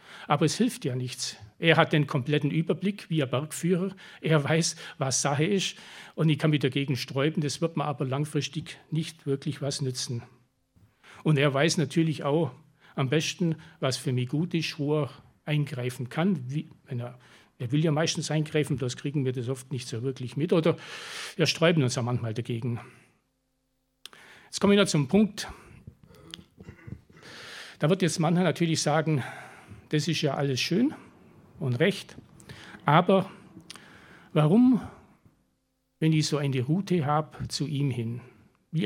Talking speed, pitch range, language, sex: 160 wpm, 135-165 Hz, German, male